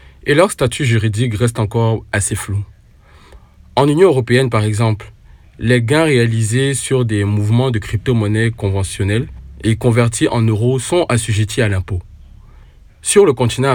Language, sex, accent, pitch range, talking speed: French, male, French, 105-130 Hz, 145 wpm